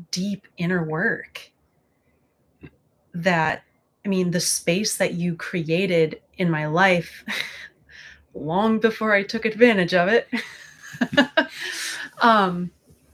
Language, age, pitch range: English, 30-49, 170-210 Hz